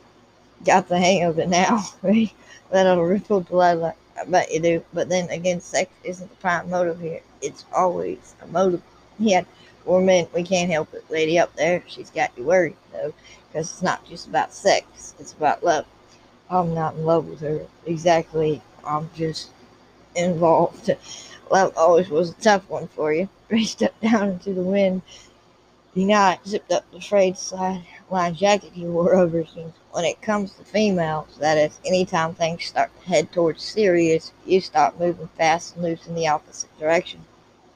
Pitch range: 165-185 Hz